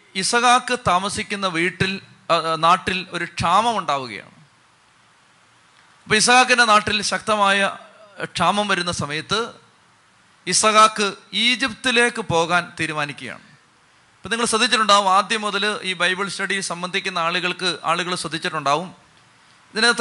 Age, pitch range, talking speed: 30-49, 180-220 Hz, 95 wpm